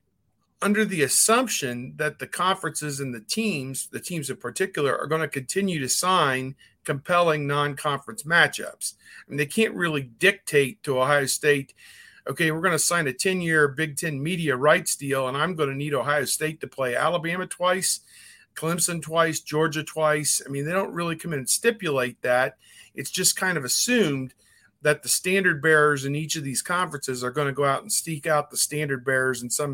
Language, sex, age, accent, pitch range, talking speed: English, male, 50-69, American, 130-165 Hz, 190 wpm